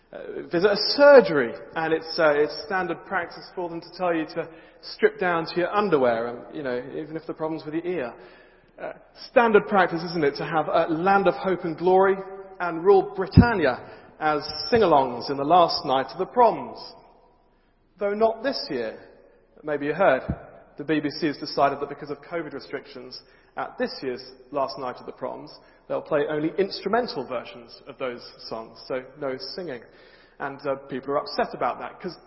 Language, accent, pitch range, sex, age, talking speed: English, British, 145-195 Hz, male, 40-59, 180 wpm